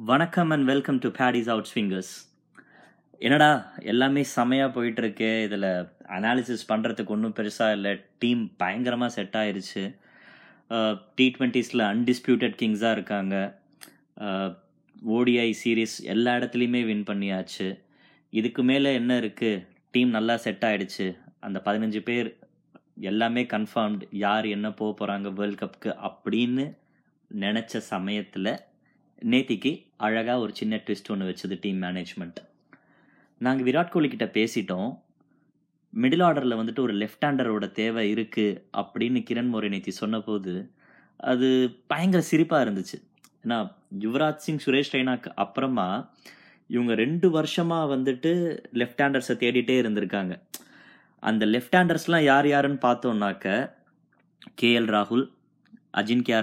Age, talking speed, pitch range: 20-39, 110 wpm, 105-130 Hz